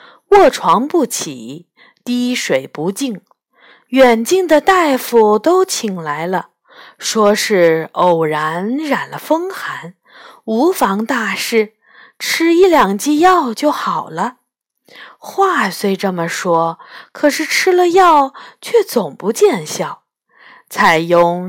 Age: 50-69